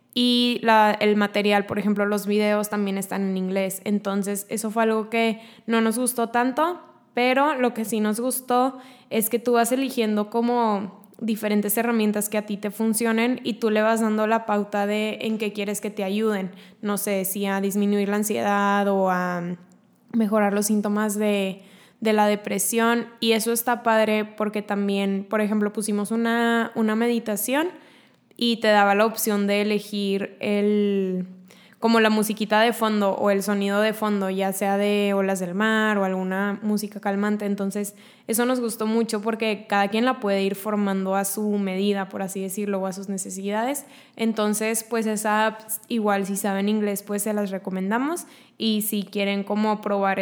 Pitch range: 200-225 Hz